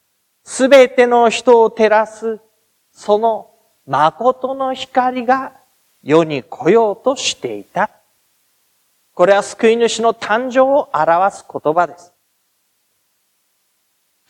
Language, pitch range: Japanese, 210-275 Hz